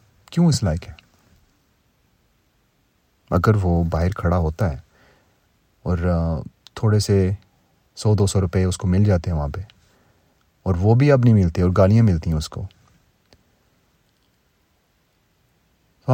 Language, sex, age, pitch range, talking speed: Urdu, male, 30-49, 85-105 Hz, 140 wpm